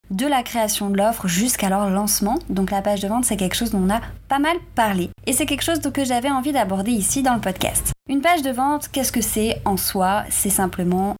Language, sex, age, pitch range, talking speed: French, female, 20-39, 185-240 Hz, 240 wpm